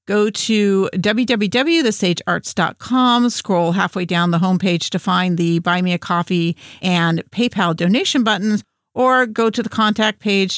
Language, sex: English, female